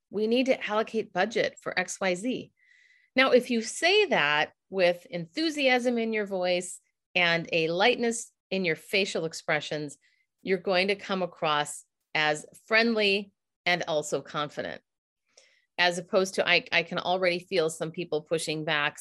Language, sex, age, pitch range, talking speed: English, female, 40-59, 165-220 Hz, 150 wpm